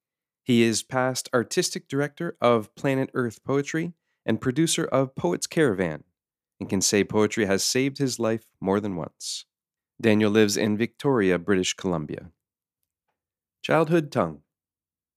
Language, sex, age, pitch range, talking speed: English, male, 40-59, 100-130 Hz, 130 wpm